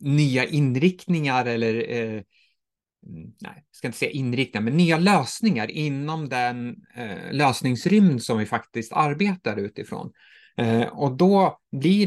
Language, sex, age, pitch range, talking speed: Swedish, male, 30-49, 115-160 Hz, 130 wpm